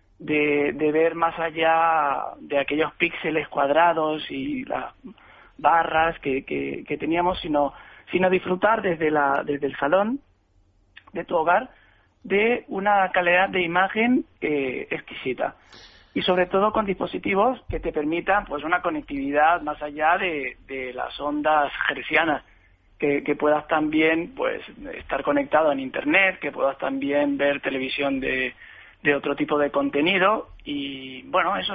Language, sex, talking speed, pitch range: Spanish, male, 140 wpm, 145-185 Hz